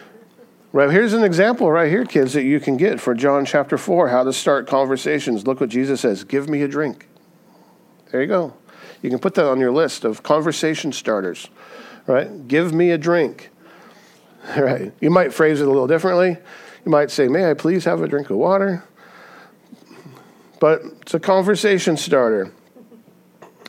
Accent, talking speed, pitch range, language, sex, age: American, 175 wpm, 135-180 Hz, English, male, 50-69